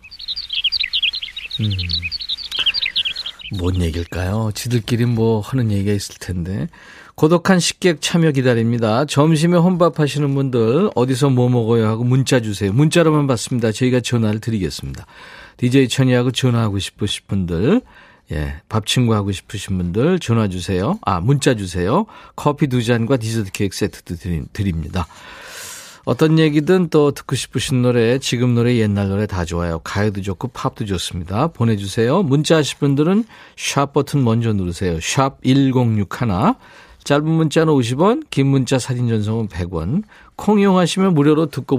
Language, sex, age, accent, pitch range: Korean, male, 40-59, native, 100-145 Hz